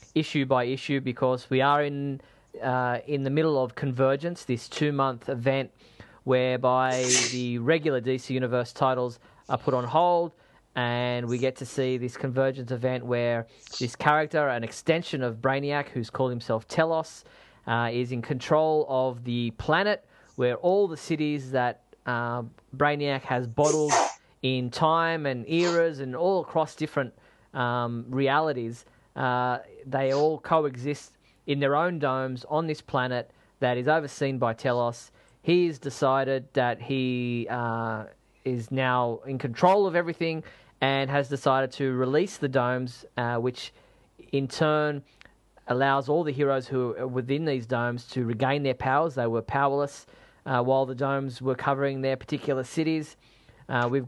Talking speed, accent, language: 150 wpm, Australian, English